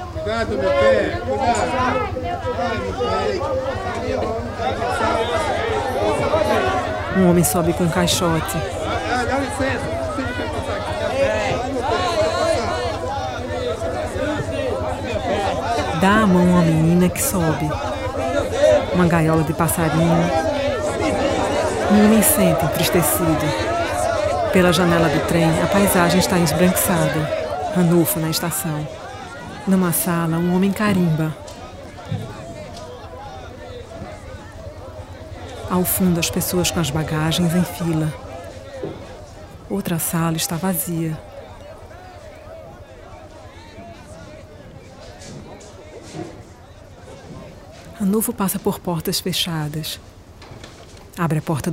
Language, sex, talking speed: Portuguese, female, 70 wpm